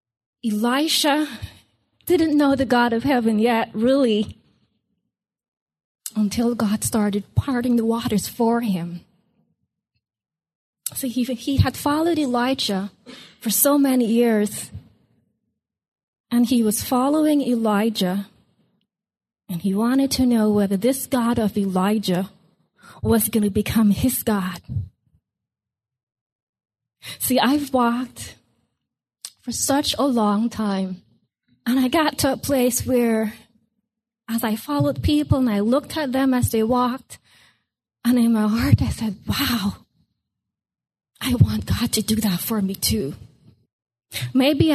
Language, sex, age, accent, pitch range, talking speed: English, female, 20-39, American, 195-260 Hz, 125 wpm